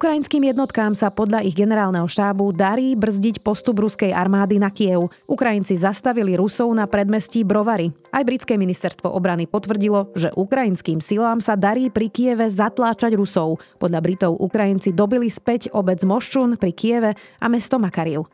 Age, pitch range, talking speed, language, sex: 30-49, 185-230 Hz, 150 wpm, Slovak, female